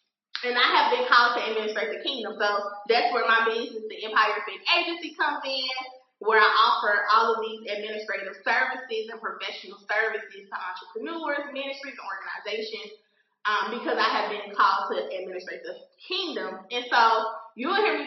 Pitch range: 220-295 Hz